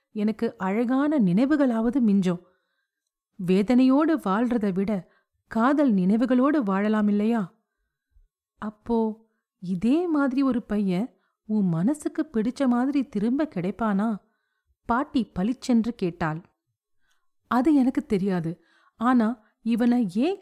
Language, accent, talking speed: Tamil, native, 90 wpm